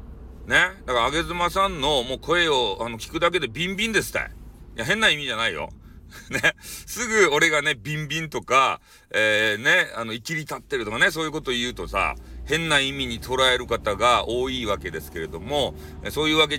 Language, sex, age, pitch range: Japanese, male, 40-59, 95-150 Hz